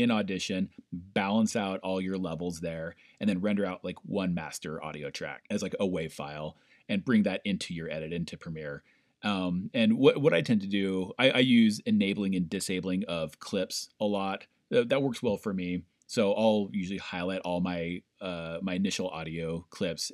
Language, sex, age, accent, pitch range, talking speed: English, male, 30-49, American, 85-110 Hz, 190 wpm